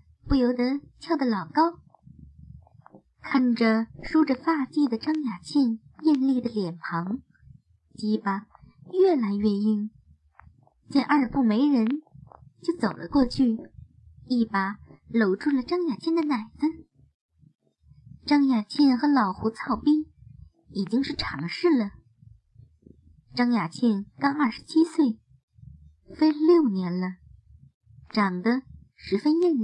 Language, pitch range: Chinese, 215-295 Hz